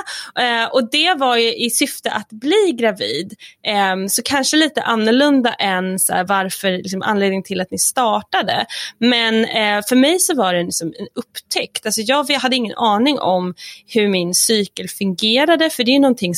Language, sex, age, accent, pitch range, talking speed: English, female, 20-39, Swedish, 185-245 Hz, 165 wpm